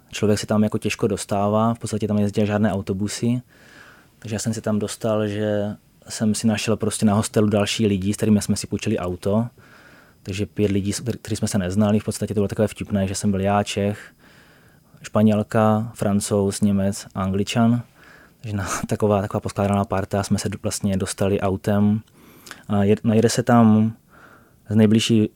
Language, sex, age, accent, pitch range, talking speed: Czech, male, 20-39, native, 100-110 Hz, 170 wpm